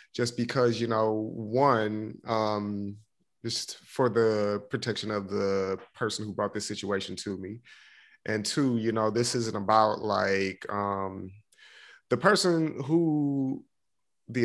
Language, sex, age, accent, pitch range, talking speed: English, male, 30-49, American, 105-120 Hz, 135 wpm